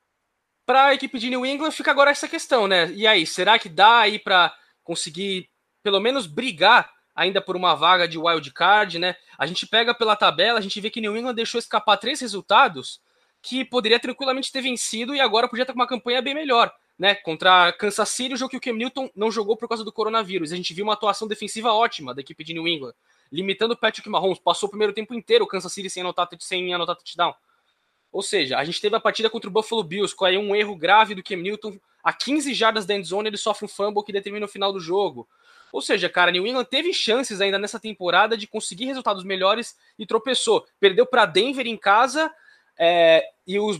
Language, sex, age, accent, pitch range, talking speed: Portuguese, male, 20-39, Brazilian, 195-255 Hz, 220 wpm